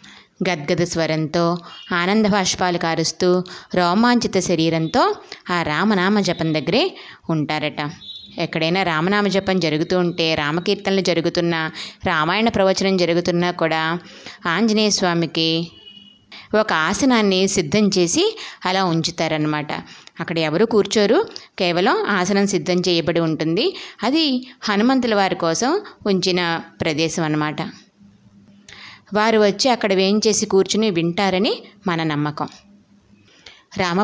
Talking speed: 95 wpm